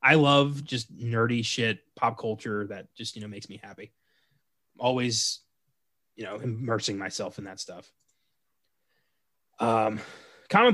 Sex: male